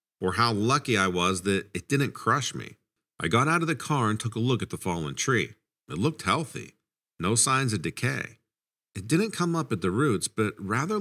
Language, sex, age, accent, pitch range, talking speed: English, male, 50-69, American, 95-140 Hz, 220 wpm